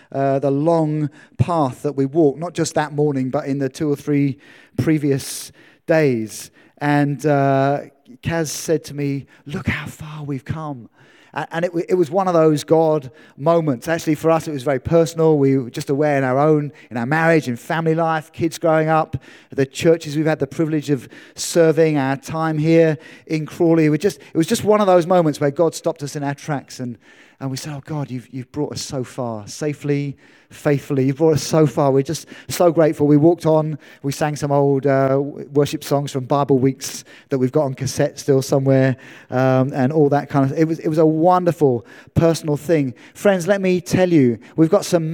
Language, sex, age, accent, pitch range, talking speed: English, male, 30-49, British, 135-160 Hz, 210 wpm